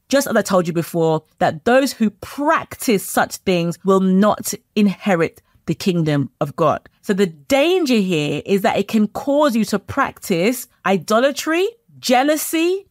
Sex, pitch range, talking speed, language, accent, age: female, 195-255 Hz, 155 wpm, English, British, 30-49